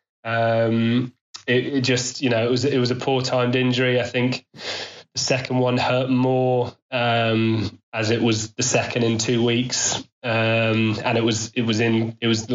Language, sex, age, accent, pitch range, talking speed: English, male, 20-39, British, 115-125 Hz, 190 wpm